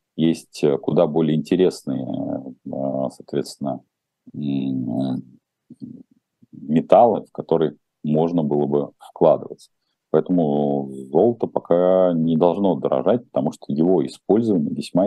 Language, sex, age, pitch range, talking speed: Russian, male, 40-59, 70-90 Hz, 90 wpm